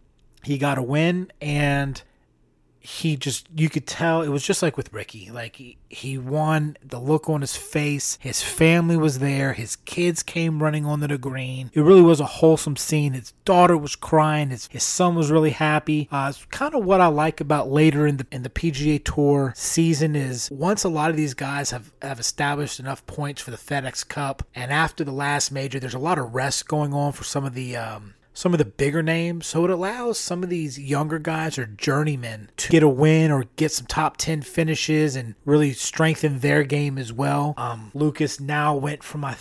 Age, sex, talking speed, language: 30-49, male, 210 wpm, English